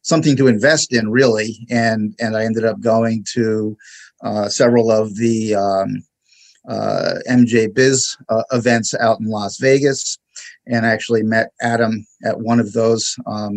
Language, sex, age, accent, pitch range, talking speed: English, male, 50-69, American, 110-120 Hz, 160 wpm